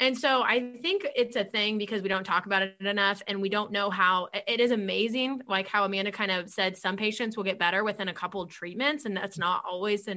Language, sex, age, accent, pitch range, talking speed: English, female, 20-39, American, 195-255 Hz, 255 wpm